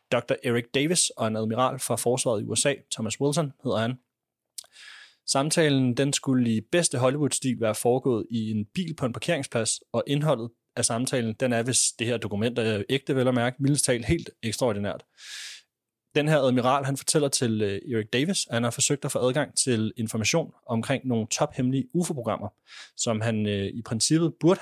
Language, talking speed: Danish, 185 wpm